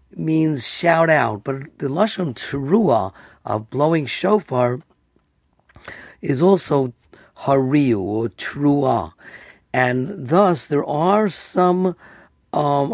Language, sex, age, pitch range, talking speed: English, male, 50-69, 125-175 Hz, 95 wpm